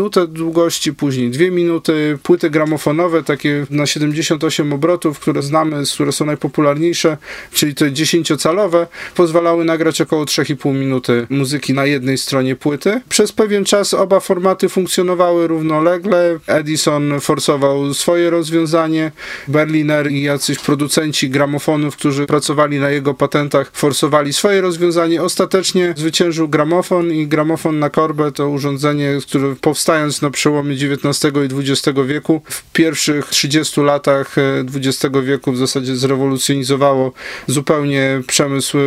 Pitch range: 140-165 Hz